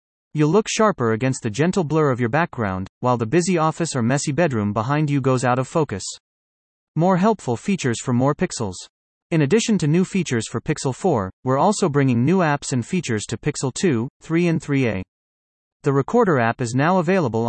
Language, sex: English, male